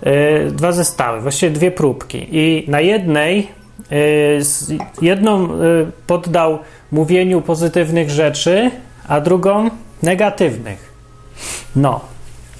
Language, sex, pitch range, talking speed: Polish, male, 135-175 Hz, 80 wpm